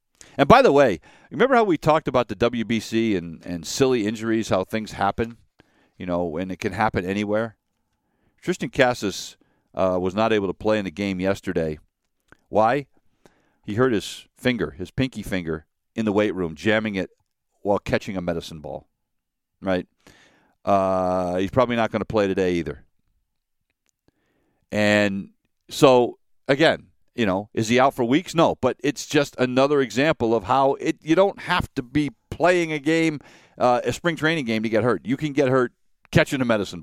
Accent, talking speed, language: American, 175 wpm, English